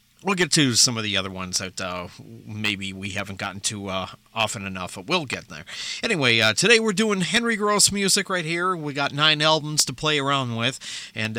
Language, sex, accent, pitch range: English, male, American, 110-155 Hz